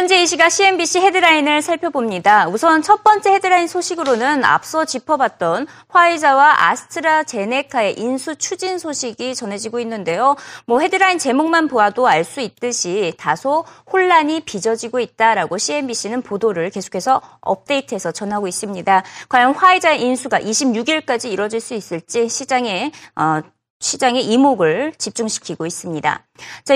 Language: Korean